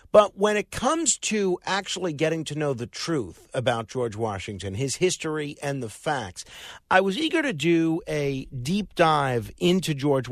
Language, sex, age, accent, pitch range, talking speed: English, male, 50-69, American, 130-165 Hz, 170 wpm